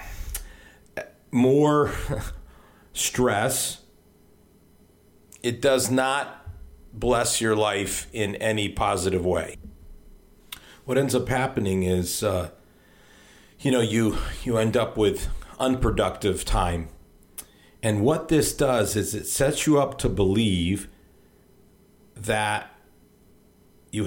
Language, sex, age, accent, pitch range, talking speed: English, male, 50-69, American, 95-120 Hz, 100 wpm